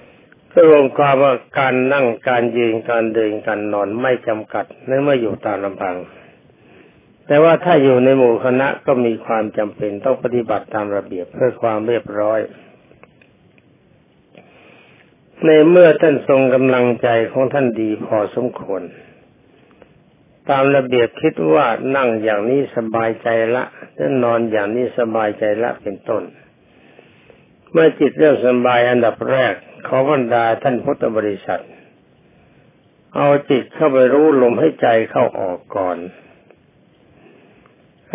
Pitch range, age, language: 115-140 Hz, 60-79, Thai